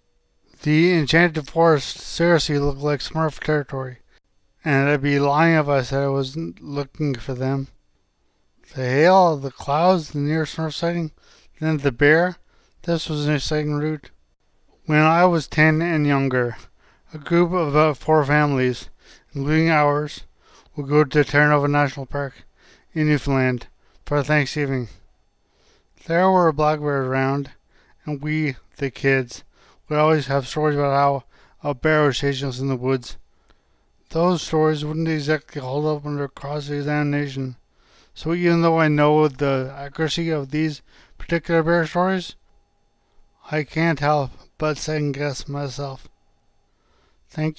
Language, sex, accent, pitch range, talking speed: English, male, American, 135-155 Hz, 140 wpm